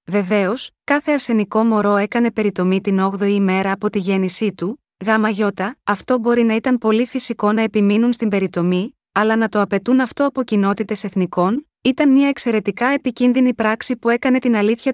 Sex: female